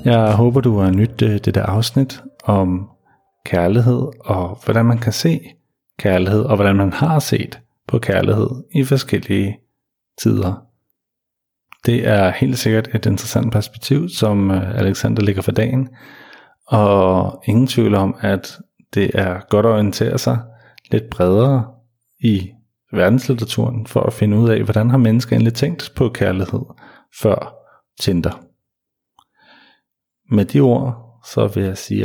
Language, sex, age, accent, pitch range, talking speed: Danish, male, 40-59, native, 100-130 Hz, 140 wpm